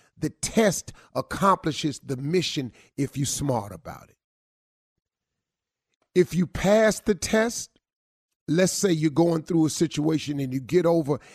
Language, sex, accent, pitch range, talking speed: English, male, American, 135-175 Hz, 135 wpm